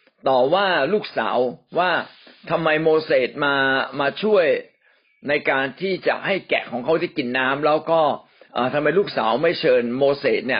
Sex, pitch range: male, 130-185 Hz